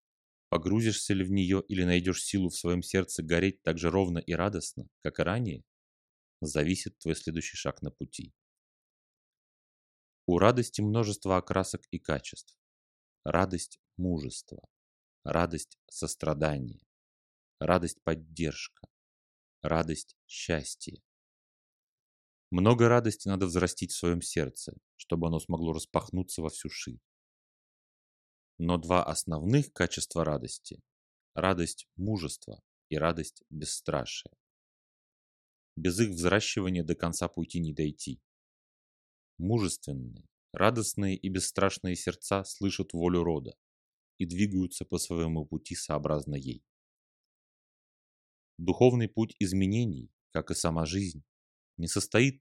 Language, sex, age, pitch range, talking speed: Russian, male, 30-49, 80-95 Hz, 115 wpm